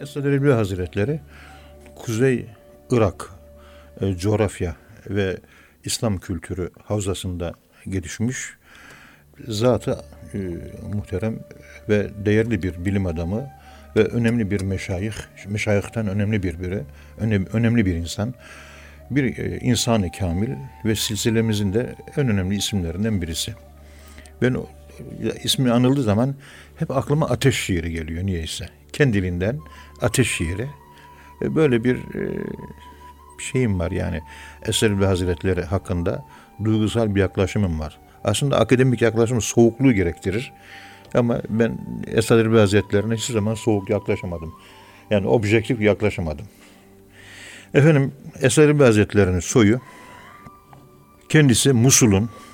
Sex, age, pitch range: male, 60-79, 90-115 Hz